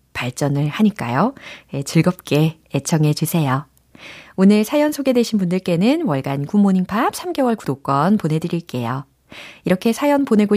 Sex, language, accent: female, Korean, native